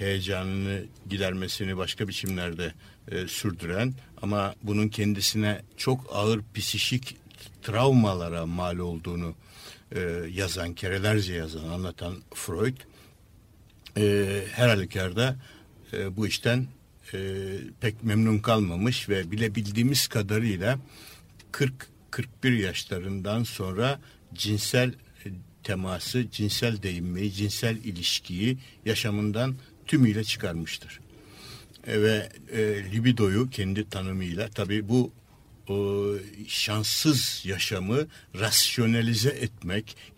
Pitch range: 95-120 Hz